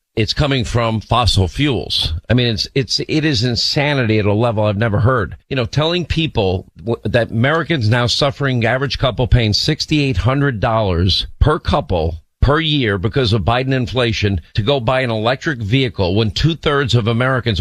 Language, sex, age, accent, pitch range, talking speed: English, male, 50-69, American, 105-125 Hz, 165 wpm